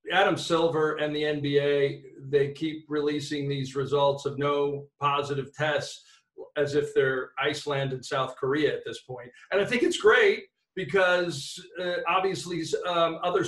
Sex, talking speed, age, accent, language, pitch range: male, 150 wpm, 50-69, American, English, 145-195 Hz